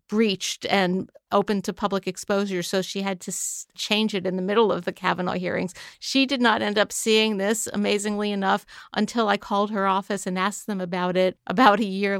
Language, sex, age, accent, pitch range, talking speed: English, female, 50-69, American, 190-225 Hz, 200 wpm